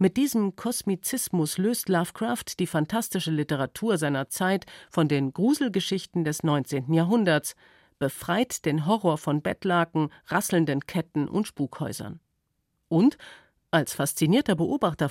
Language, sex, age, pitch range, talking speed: German, female, 50-69, 150-195 Hz, 115 wpm